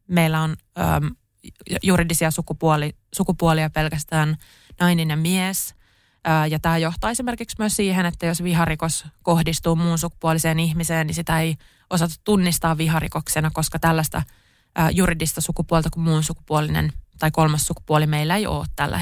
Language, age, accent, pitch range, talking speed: Finnish, 20-39, native, 155-175 Hz, 140 wpm